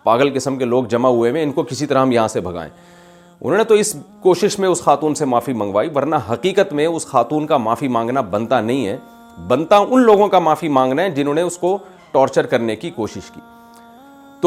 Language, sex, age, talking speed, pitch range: Urdu, male, 40-59, 220 wpm, 135-205 Hz